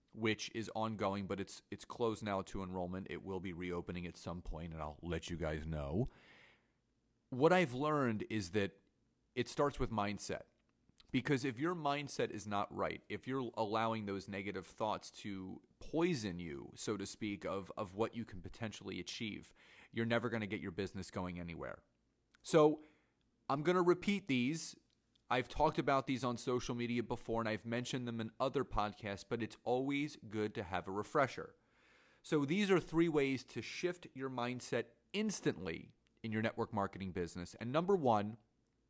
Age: 30-49